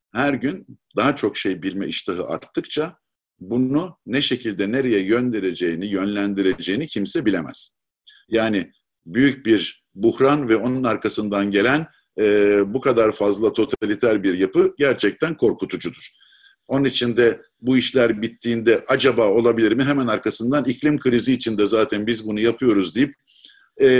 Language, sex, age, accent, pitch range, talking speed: Turkish, male, 50-69, native, 100-130 Hz, 135 wpm